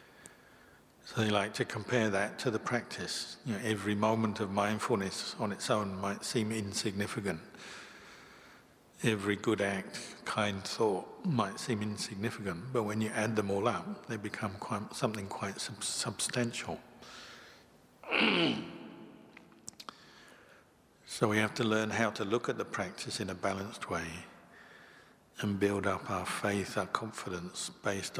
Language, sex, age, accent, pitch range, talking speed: English, male, 50-69, British, 100-110 Hz, 130 wpm